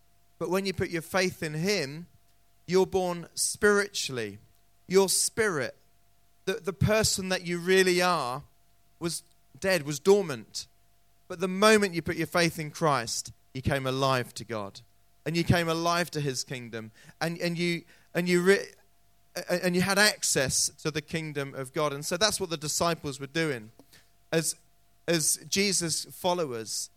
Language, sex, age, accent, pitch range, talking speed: English, male, 30-49, British, 135-180 Hz, 160 wpm